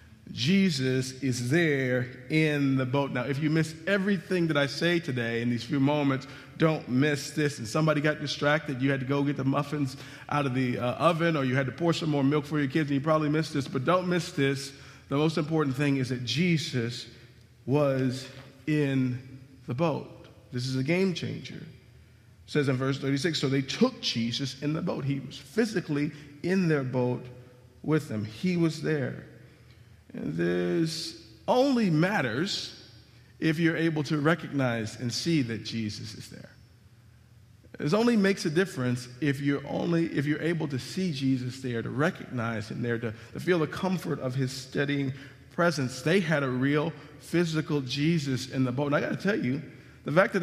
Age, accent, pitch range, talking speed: 40-59, American, 125-155 Hz, 190 wpm